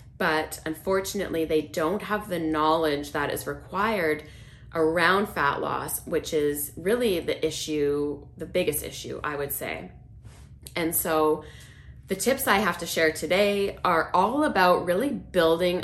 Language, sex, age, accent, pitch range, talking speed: English, female, 20-39, American, 155-190 Hz, 145 wpm